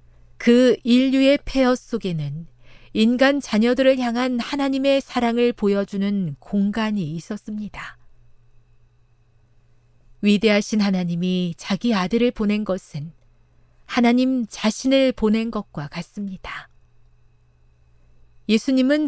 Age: 40-59